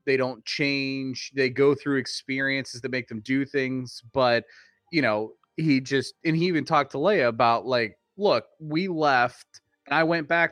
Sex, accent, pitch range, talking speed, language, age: male, American, 115-145 Hz, 185 wpm, English, 30-49